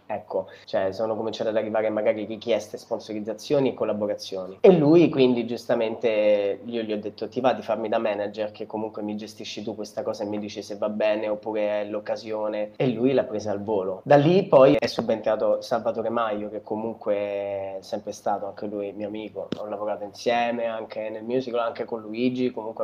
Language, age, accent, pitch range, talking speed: Italian, 20-39, native, 105-130 Hz, 190 wpm